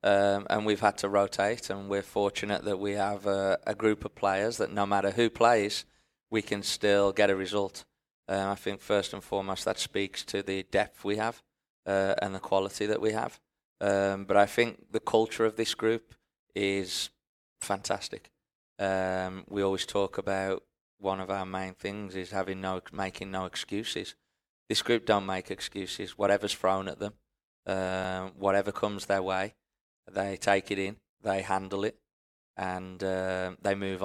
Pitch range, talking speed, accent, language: 95-100 Hz, 175 wpm, British, English